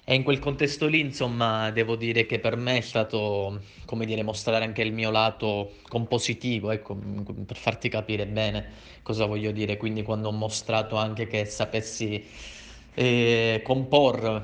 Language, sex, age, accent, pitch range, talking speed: Italian, male, 20-39, native, 105-120 Hz, 160 wpm